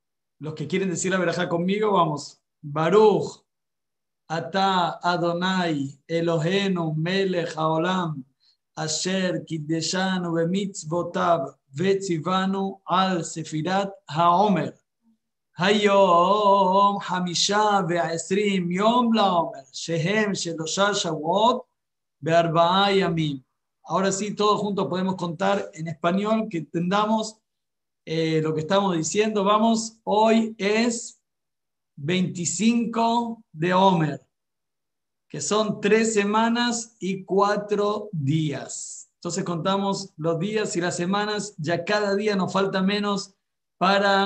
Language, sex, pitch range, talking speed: English, male, 170-205 Hz, 95 wpm